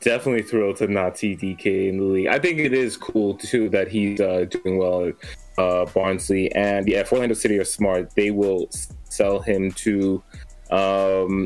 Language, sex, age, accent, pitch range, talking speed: English, male, 20-39, American, 95-110 Hz, 185 wpm